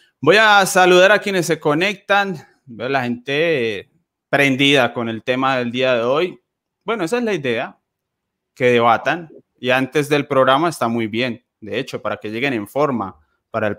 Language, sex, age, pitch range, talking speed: Spanish, male, 20-39, 125-150 Hz, 175 wpm